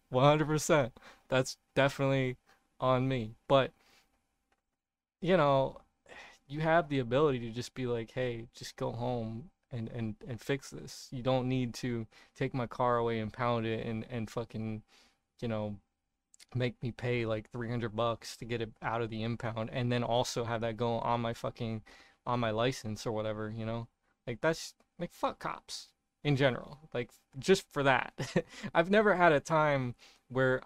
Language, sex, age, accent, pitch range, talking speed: English, male, 20-39, American, 120-155 Hz, 170 wpm